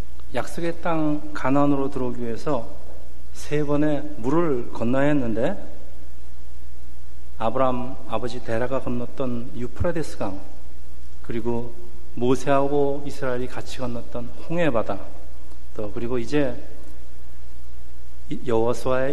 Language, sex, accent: Korean, male, native